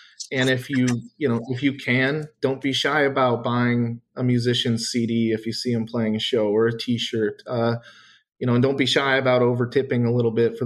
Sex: male